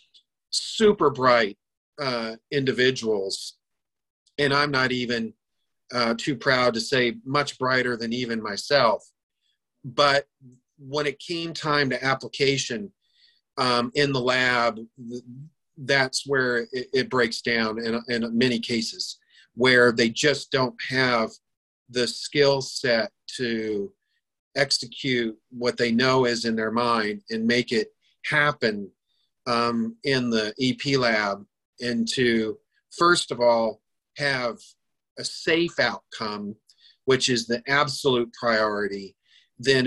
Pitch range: 115-140 Hz